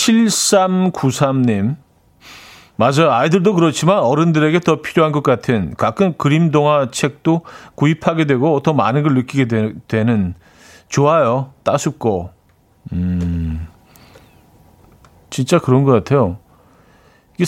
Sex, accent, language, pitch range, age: male, native, Korean, 115-155 Hz, 40-59